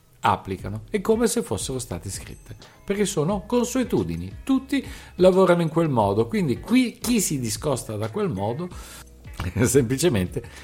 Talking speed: 130 wpm